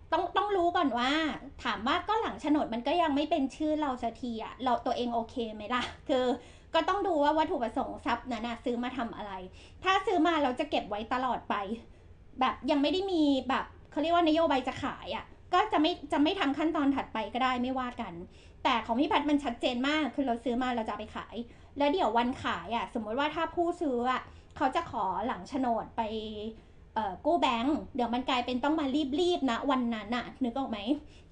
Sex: female